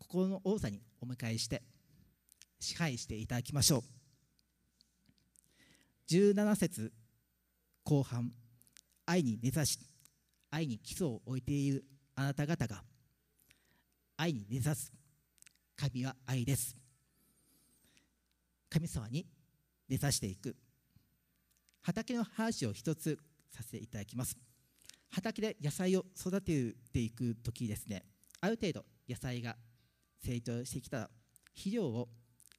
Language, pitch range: Japanese, 115-155 Hz